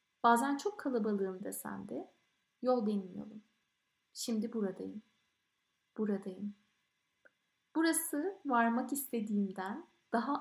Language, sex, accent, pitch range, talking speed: Turkish, female, native, 210-250 Hz, 80 wpm